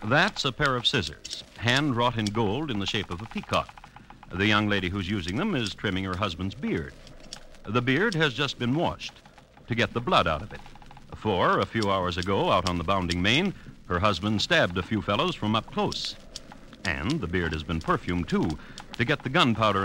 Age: 60-79